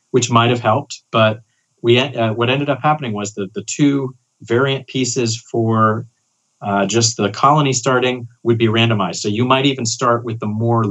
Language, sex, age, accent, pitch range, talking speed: English, male, 30-49, American, 105-130 Hz, 185 wpm